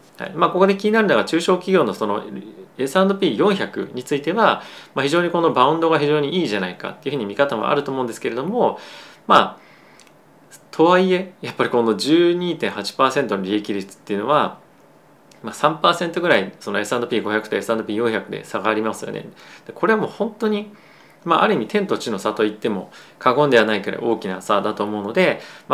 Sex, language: male, Japanese